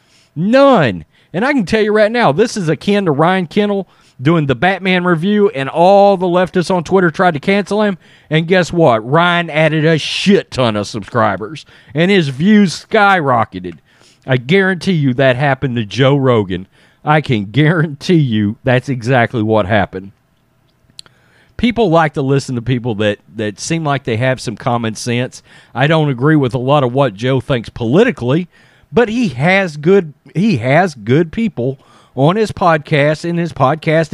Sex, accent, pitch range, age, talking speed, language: male, American, 125-185 Hz, 40-59, 170 wpm, English